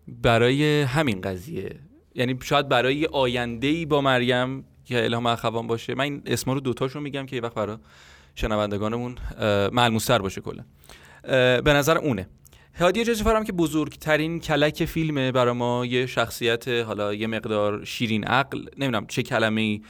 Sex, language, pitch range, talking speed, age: male, Persian, 110-145 Hz, 150 wpm, 30-49